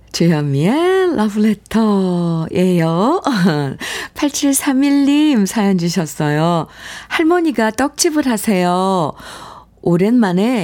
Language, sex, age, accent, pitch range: Korean, female, 50-69, native, 180-260 Hz